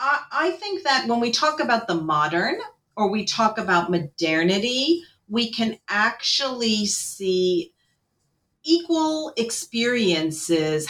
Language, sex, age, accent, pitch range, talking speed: English, female, 40-59, American, 160-220 Hz, 110 wpm